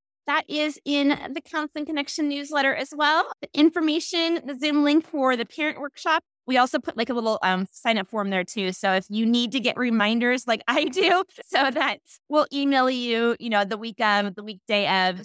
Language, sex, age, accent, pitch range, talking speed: English, female, 20-39, American, 210-290 Hz, 210 wpm